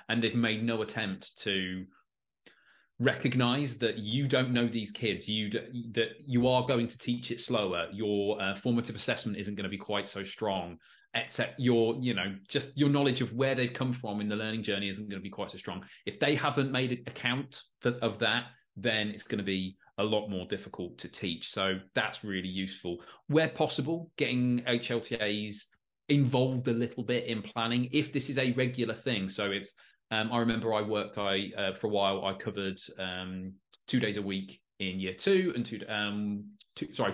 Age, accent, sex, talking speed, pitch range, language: 20-39, British, male, 195 wpm, 100-125 Hz, English